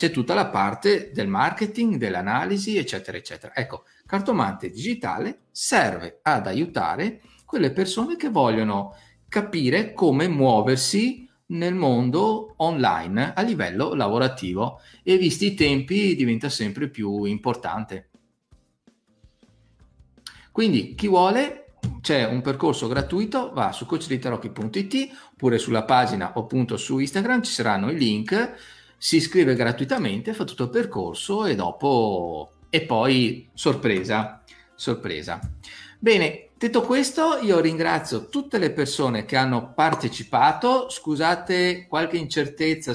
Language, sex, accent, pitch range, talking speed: Italian, male, native, 130-190 Hz, 115 wpm